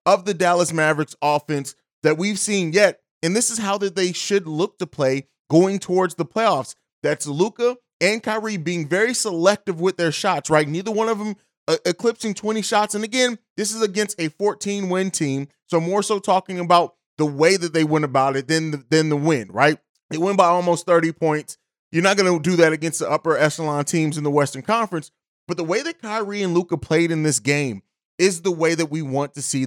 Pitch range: 150-195 Hz